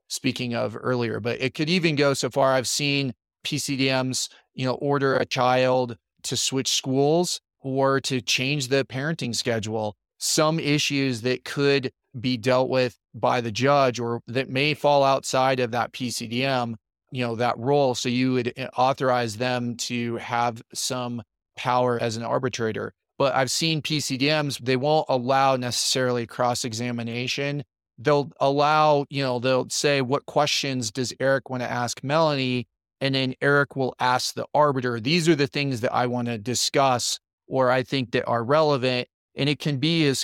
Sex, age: male, 30-49